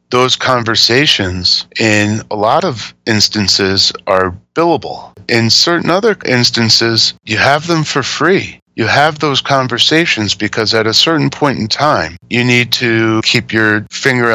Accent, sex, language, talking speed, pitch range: American, male, English, 145 wpm, 105-125 Hz